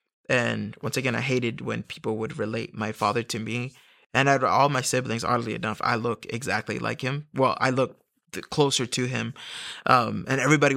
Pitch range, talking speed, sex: 115-135 Hz, 195 wpm, male